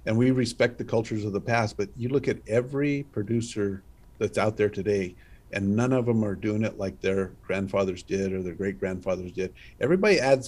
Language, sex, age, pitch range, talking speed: English, male, 50-69, 100-120 Hz, 200 wpm